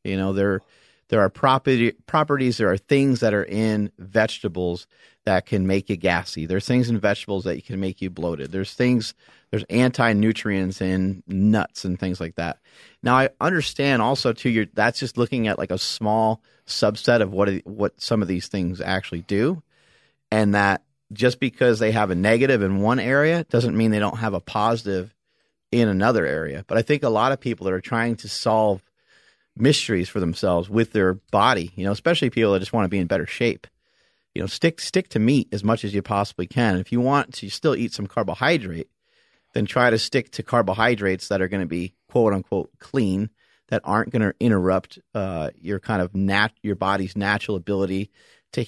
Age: 30-49